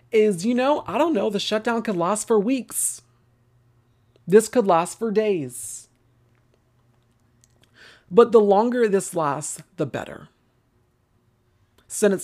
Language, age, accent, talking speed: English, 40-59, American, 125 wpm